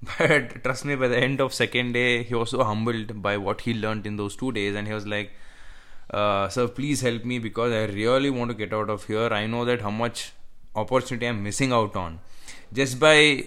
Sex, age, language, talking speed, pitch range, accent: male, 20-39, English, 225 wpm, 105-125 Hz, Indian